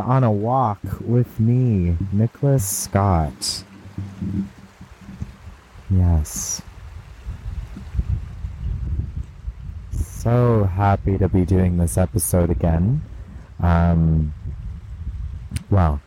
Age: 30-49